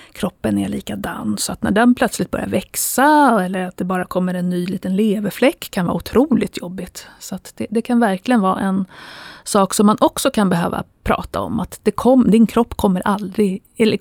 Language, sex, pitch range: Swedish, female, 185-245 Hz